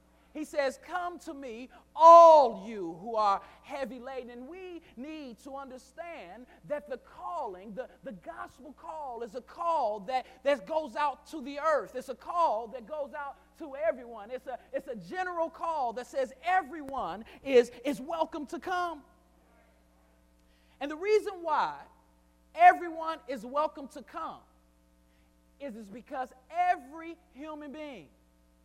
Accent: American